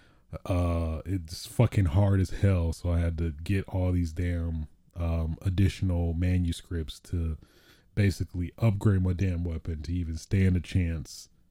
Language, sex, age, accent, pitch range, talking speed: English, male, 30-49, American, 85-105 Hz, 145 wpm